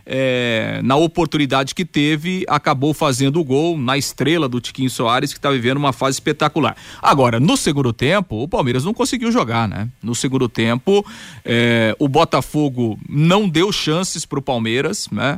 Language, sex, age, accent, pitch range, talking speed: Portuguese, male, 40-59, Brazilian, 140-205 Hz, 165 wpm